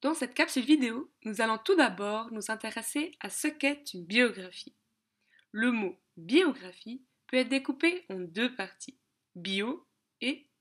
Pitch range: 195-275 Hz